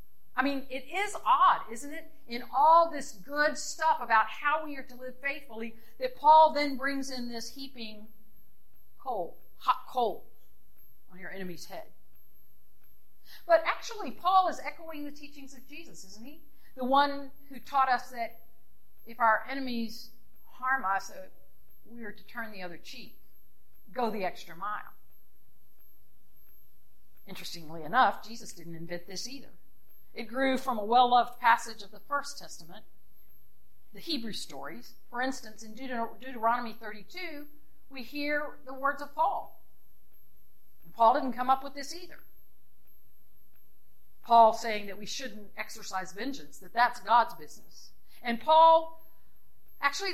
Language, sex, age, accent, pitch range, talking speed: English, female, 50-69, American, 220-300 Hz, 140 wpm